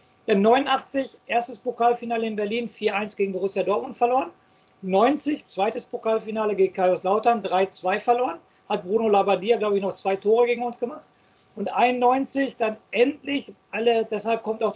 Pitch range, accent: 200-235 Hz, German